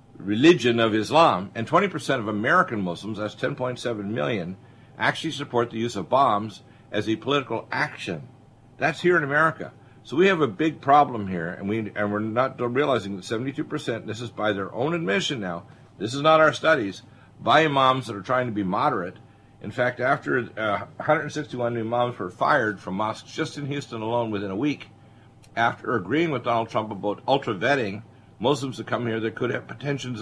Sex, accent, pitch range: male, American, 105-135 Hz